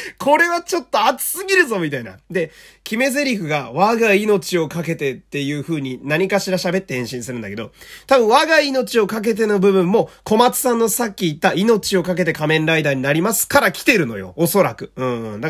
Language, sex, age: Japanese, male, 30-49